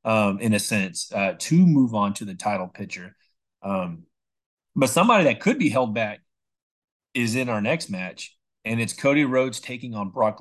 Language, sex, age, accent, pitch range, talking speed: English, male, 30-49, American, 110-155 Hz, 175 wpm